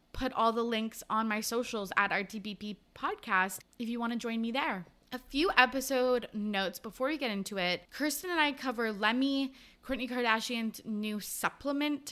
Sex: female